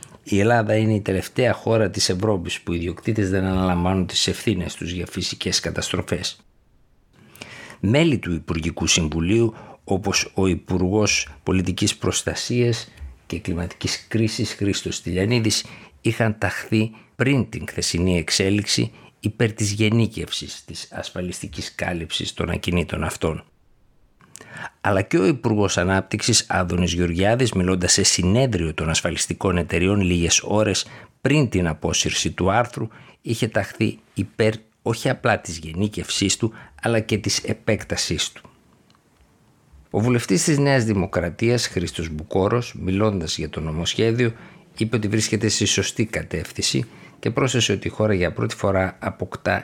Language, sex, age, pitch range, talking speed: Greek, male, 60-79, 90-110 Hz, 130 wpm